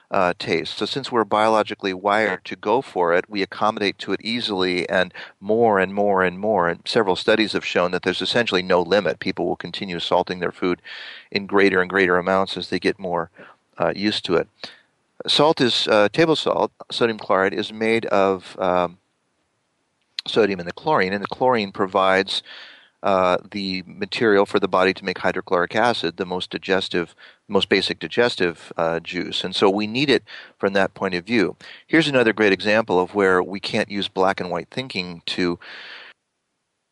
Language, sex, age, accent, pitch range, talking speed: English, male, 40-59, American, 95-115 Hz, 180 wpm